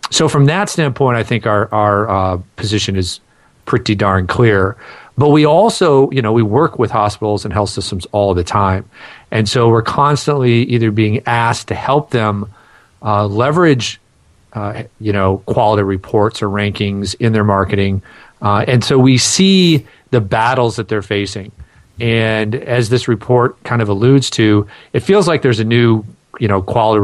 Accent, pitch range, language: American, 100-125 Hz, English